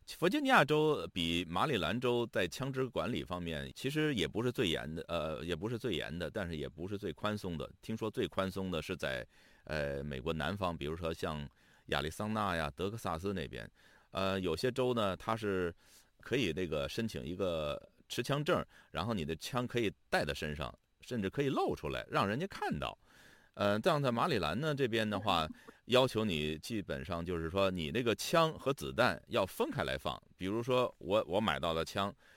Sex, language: male, Chinese